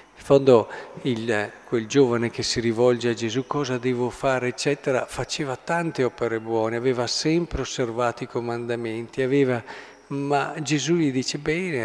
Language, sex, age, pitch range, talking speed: Italian, male, 50-69, 110-135 Hz, 140 wpm